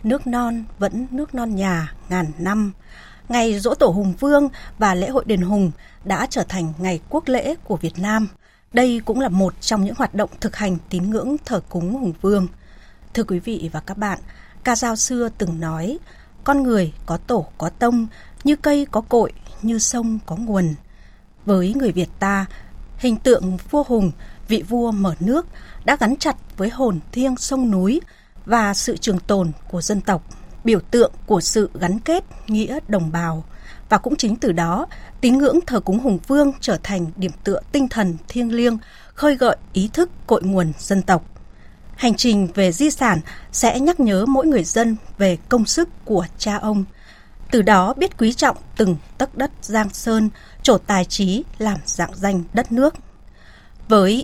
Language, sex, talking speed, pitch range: Vietnamese, female, 185 wpm, 185-245 Hz